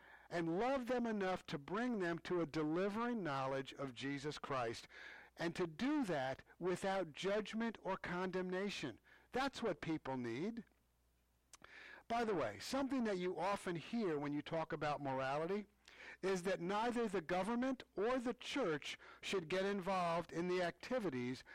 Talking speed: 150 wpm